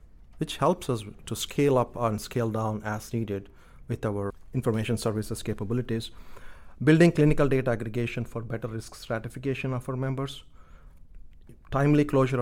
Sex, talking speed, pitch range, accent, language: male, 140 wpm, 105-120 Hz, Indian, English